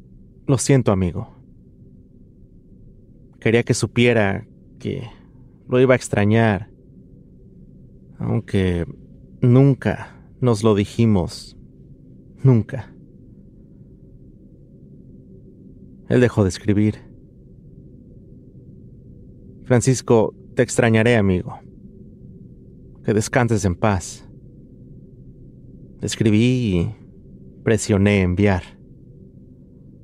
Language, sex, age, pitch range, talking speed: English, male, 30-49, 90-120 Hz, 65 wpm